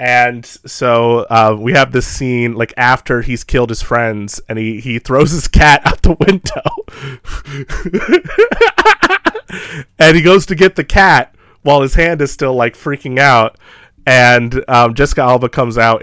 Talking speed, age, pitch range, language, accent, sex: 160 wpm, 30-49, 110-140 Hz, English, American, male